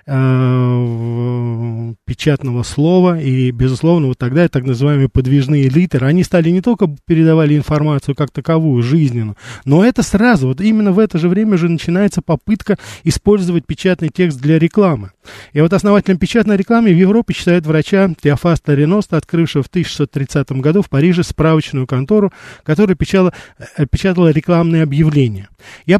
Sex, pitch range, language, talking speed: male, 130-175 Hz, Russian, 140 wpm